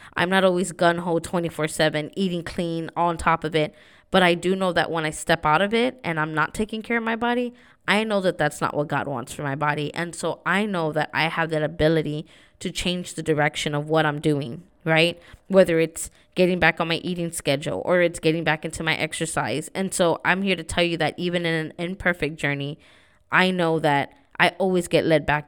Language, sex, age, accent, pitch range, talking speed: English, female, 20-39, American, 155-180 Hz, 230 wpm